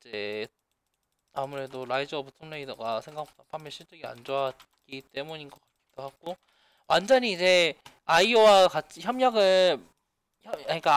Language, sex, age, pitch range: Korean, male, 20-39, 135-180 Hz